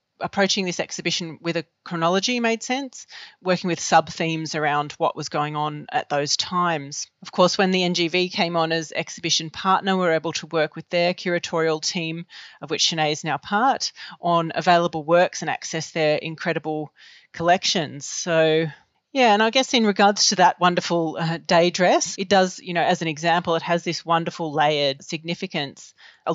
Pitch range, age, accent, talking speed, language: 160-185 Hz, 30-49, Australian, 180 wpm, English